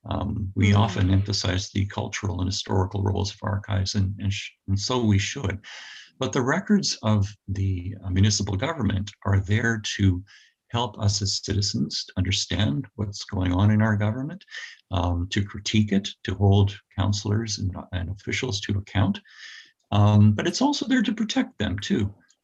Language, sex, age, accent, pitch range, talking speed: English, male, 50-69, American, 100-110 Hz, 160 wpm